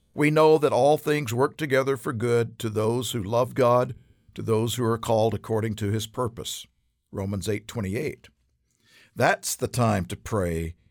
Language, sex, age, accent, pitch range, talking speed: English, male, 50-69, American, 110-145 Hz, 175 wpm